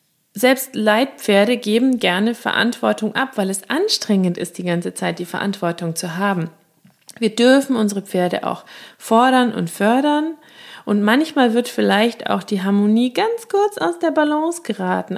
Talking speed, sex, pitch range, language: 150 wpm, female, 195-260 Hz, German